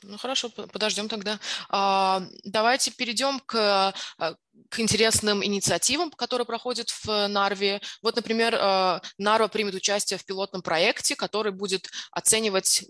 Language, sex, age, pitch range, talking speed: Russian, female, 20-39, 175-215 Hz, 115 wpm